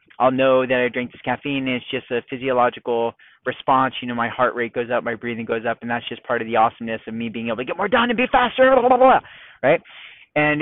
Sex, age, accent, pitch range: male, 30-49, American, 120-150 Hz